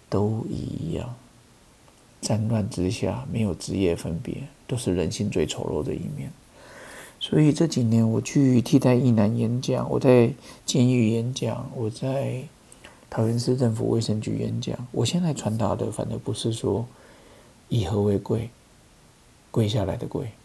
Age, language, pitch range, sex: 50-69, Chinese, 110-130 Hz, male